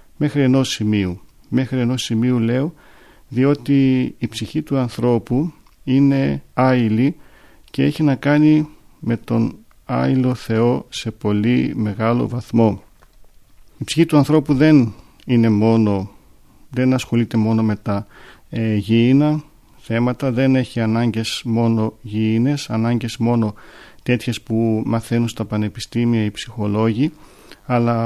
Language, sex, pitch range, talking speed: Greek, male, 110-135 Hz, 120 wpm